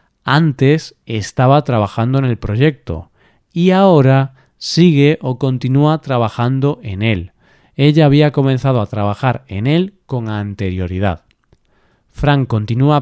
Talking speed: 115 wpm